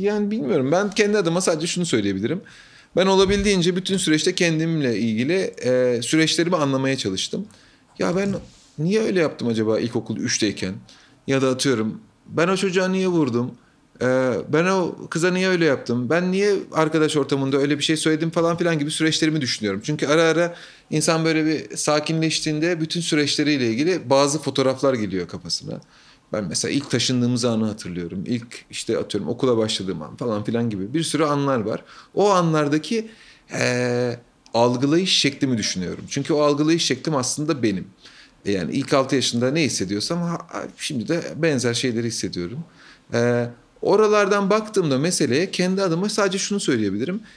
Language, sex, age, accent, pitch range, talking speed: Turkish, male, 30-49, native, 125-180 Hz, 155 wpm